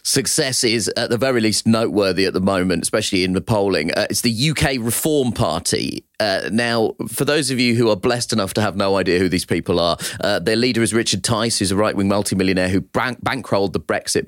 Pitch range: 95-120 Hz